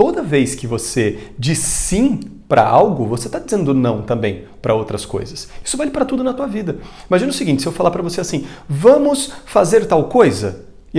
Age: 40-59